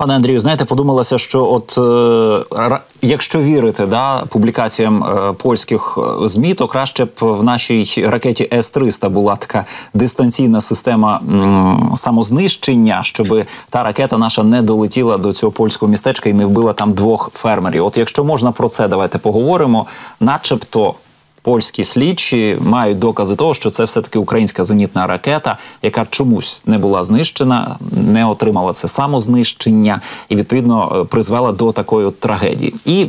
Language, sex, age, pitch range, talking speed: Ukrainian, male, 20-39, 105-130 Hz, 140 wpm